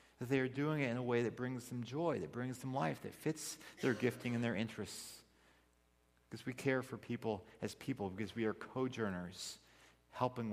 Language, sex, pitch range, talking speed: English, male, 110-150 Hz, 200 wpm